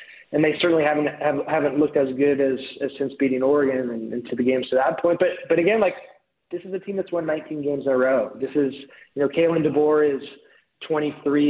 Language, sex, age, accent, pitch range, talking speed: English, male, 20-39, American, 135-160 Hz, 230 wpm